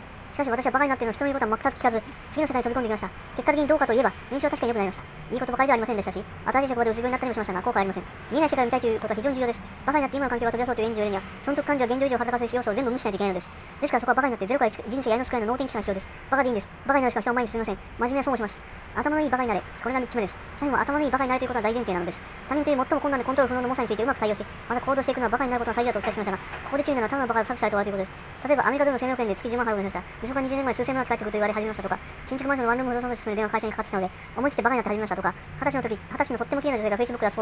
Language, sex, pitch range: Japanese, male, 220-265 Hz